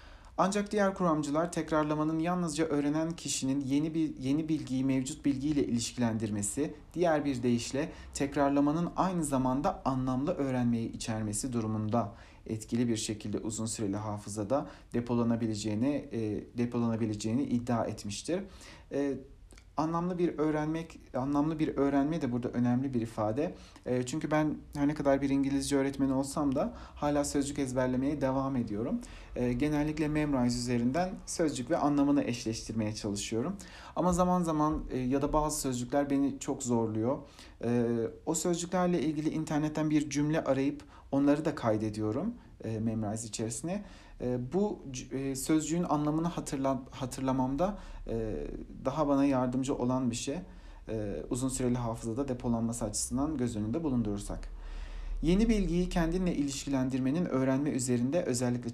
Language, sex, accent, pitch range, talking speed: Turkish, male, native, 115-150 Hz, 120 wpm